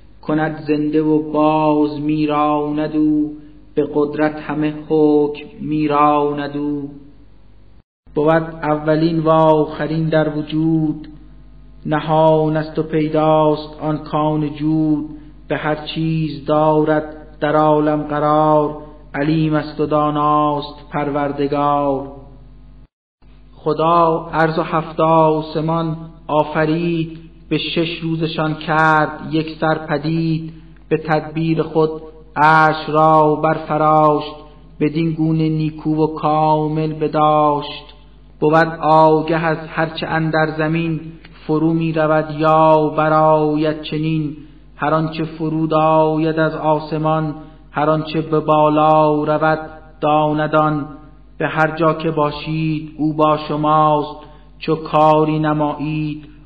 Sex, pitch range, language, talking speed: male, 150-155 Hz, Persian, 105 wpm